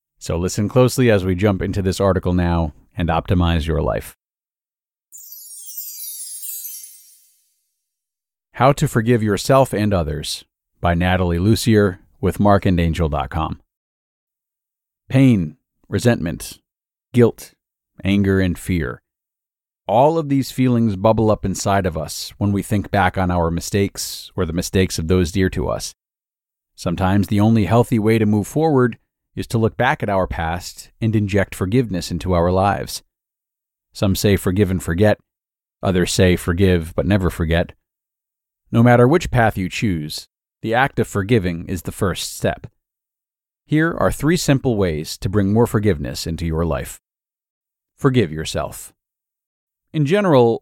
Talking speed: 140 wpm